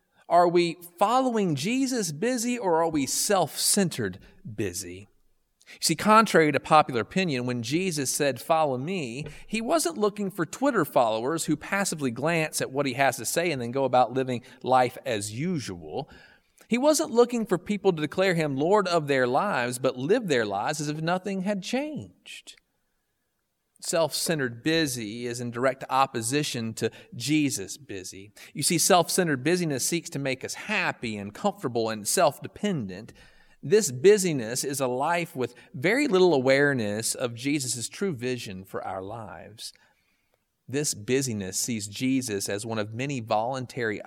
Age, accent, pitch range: 40-59, American, 120-175 Hz